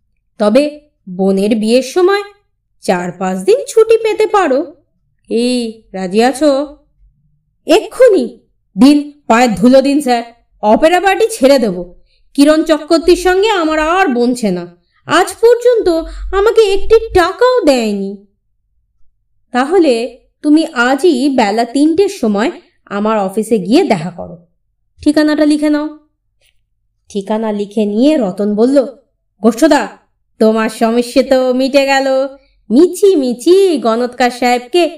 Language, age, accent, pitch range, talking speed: Bengali, 30-49, native, 205-330 Hz, 105 wpm